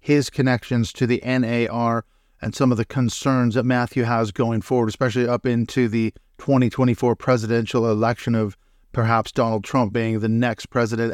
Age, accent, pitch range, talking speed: 40-59, American, 115-130 Hz, 160 wpm